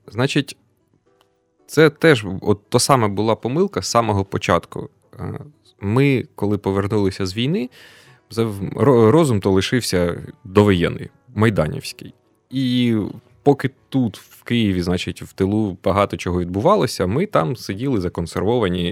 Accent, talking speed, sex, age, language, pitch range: native, 115 wpm, male, 20-39, Ukrainian, 90-120 Hz